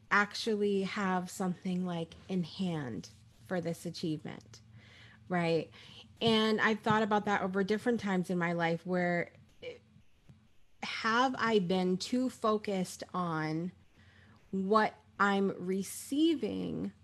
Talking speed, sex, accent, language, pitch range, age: 110 wpm, female, American, English, 175-230 Hz, 30-49